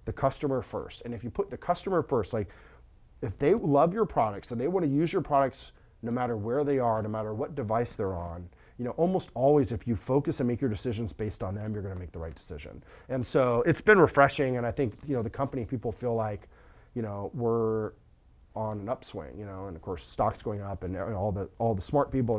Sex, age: male, 30-49